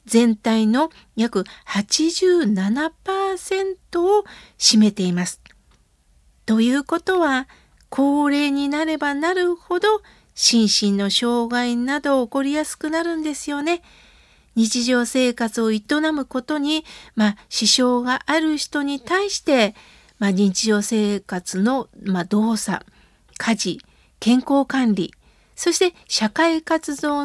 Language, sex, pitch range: Japanese, female, 225-320 Hz